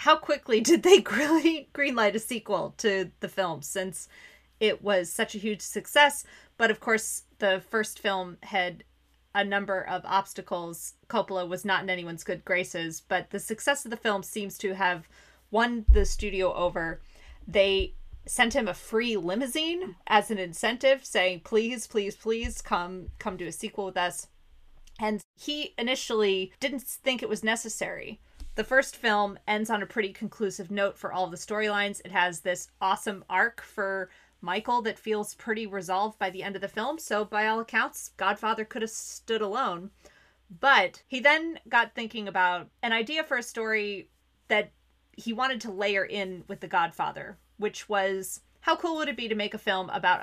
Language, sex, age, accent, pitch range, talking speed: English, female, 30-49, American, 185-225 Hz, 175 wpm